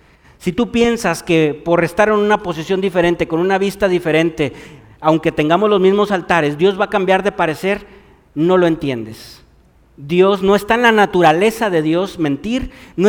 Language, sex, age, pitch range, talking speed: Spanish, male, 50-69, 170-235 Hz, 175 wpm